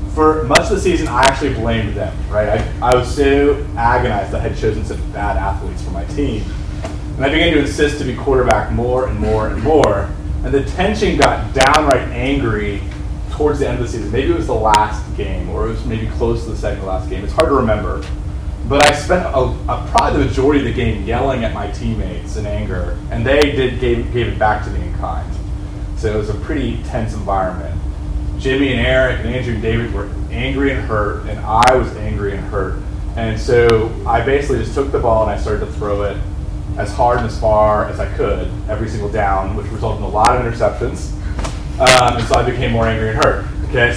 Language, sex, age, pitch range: English, male, 30-49, 100-120 Hz